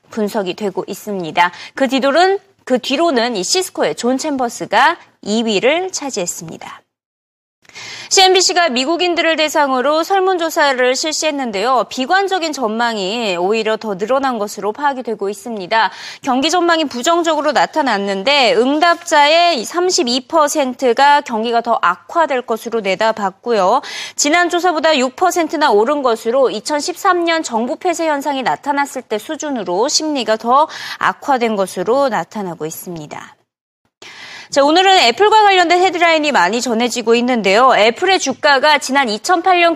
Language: Korean